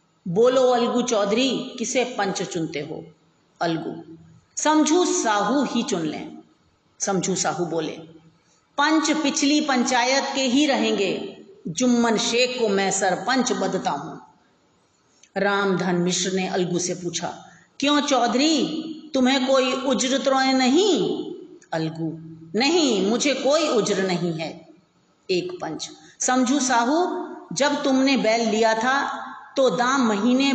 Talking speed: 120 wpm